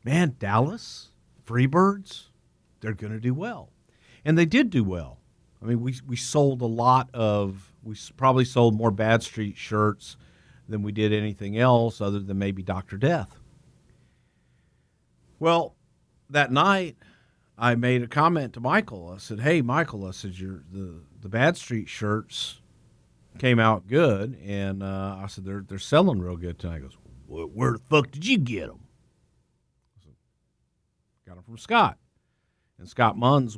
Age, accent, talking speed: 50-69, American, 155 wpm